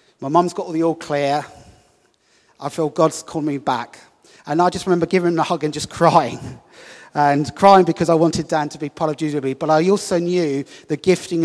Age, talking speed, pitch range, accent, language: 30-49, 215 wpm, 145-170 Hz, British, English